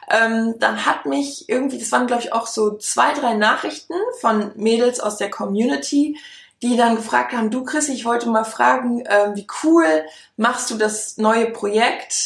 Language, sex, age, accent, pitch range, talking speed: German, female, 20-39, German, 215-255 Hz, 180 wpm